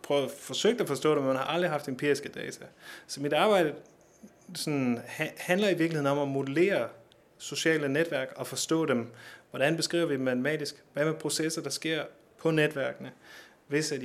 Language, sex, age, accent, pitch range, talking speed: Danish, male, 30-49, native, 130-155 Hz, 175 wpm